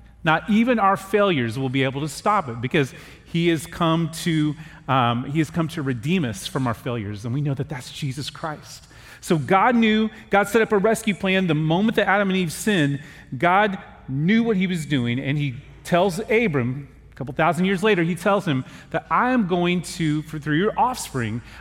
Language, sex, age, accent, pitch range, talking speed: English, male, 30-49, American, 130-185 Hz, 210 wpm